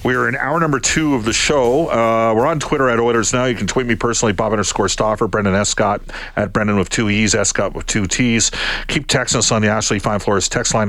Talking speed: 250 wpm